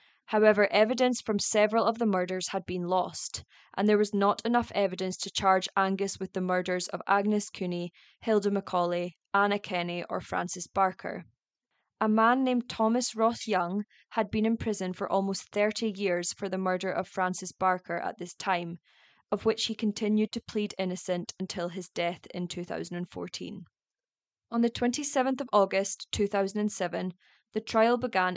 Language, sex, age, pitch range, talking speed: English, female, 20-39, 185-220 Hz, 160 wpm